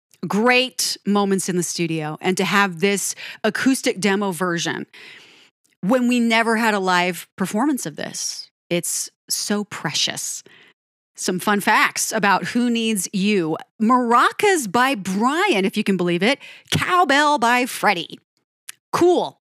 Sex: female